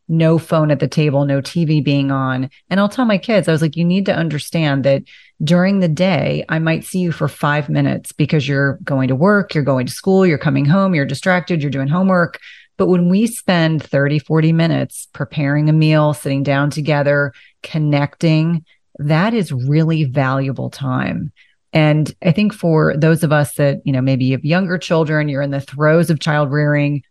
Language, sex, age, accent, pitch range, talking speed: English, female, 30-49, American, 140-165 Hz, 200 wpm